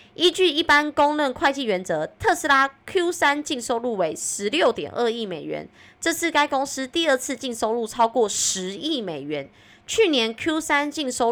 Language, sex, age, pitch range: Chinese, female, 20-39, 205-290 Hz